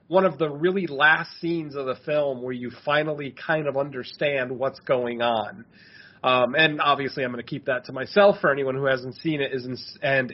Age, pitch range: 30-49, 135-170 Hz